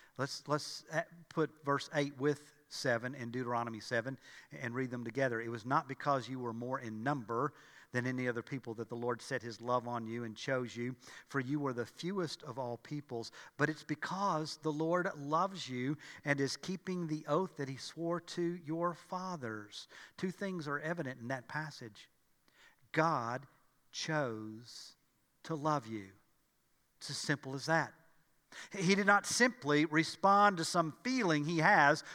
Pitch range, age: 140-195 Hz, 50-69